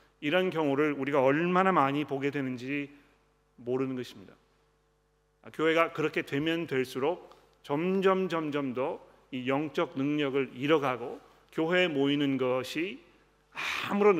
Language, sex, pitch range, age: Korean, male, 135-175 Hz, 40-59